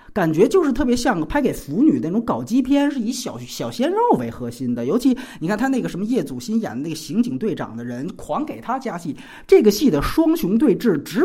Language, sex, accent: Chinese, male, native